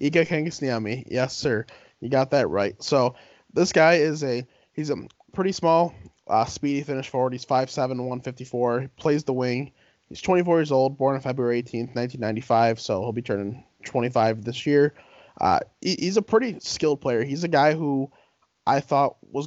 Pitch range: 125-145 Hz